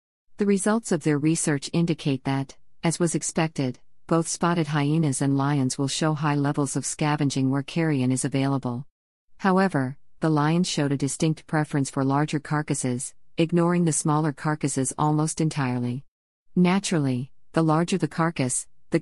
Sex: female